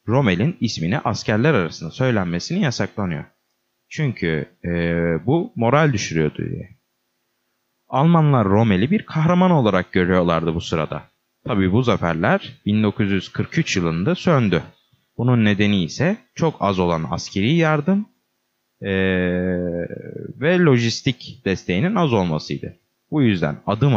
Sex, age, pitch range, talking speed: male, 30-49, 90-150 Hz, 110 wpm